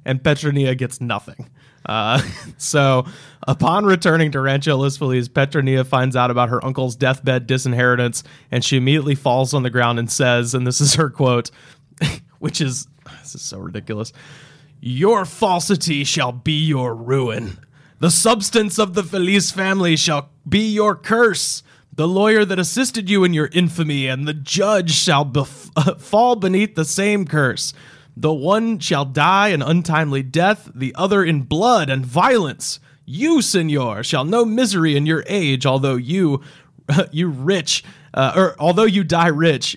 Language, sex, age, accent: English, male, 20-39, American